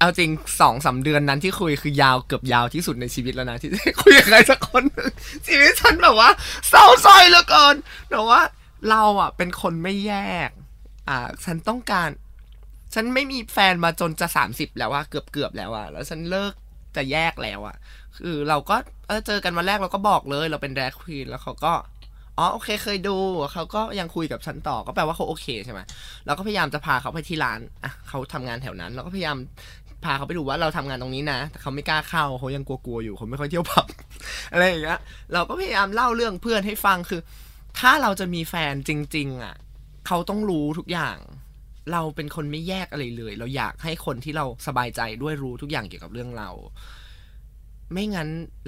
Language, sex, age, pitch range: Thai, male, 20-39, 130-185 Hz